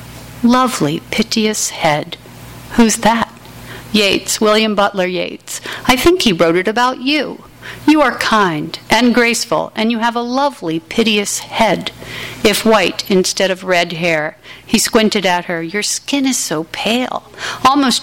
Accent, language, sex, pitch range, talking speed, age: American, English, female, 190-260 Hz, 145 wpm, 50-69